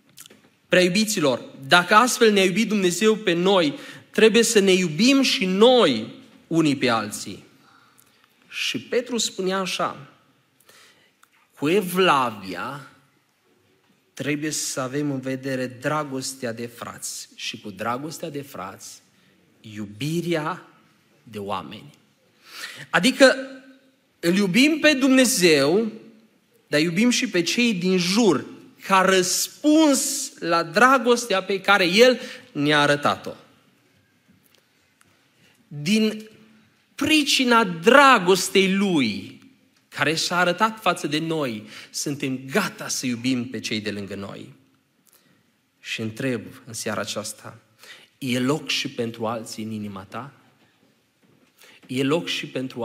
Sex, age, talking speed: male, 30-49, 110 wpm